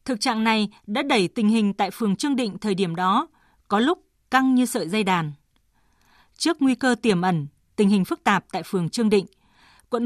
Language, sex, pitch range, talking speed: Vietnamese, female, 195-255 Hz, 210 wpm